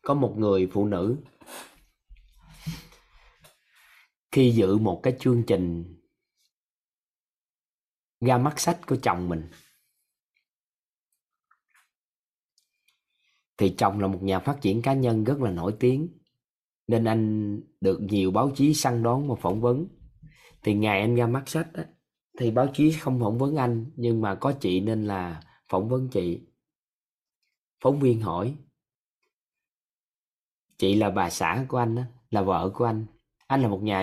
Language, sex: Vietnamese, male